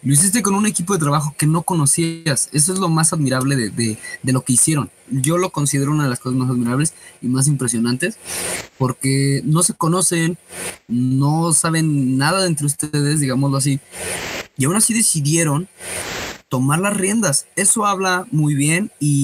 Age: 20-39